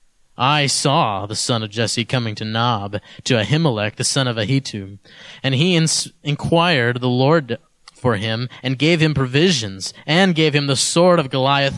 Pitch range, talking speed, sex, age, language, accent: 115-165 Hz, 170 wpm, male, 30-49, English, American